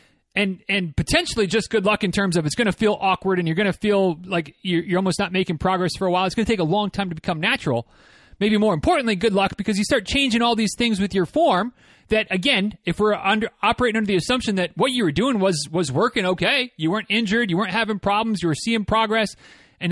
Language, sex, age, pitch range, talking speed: English, male, 30-49, 175-230 Hz, 255 wpm